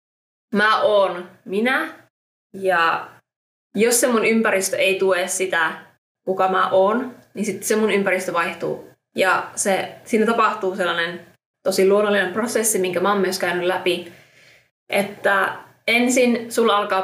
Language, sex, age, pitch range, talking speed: Finnish, female, 20-39, 185-220 Hz, 130 wpm